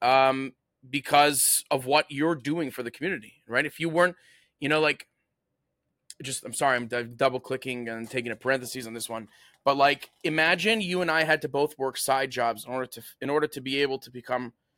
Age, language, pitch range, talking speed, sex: 20-39, English, 135-165 Hz, 210 wpm, male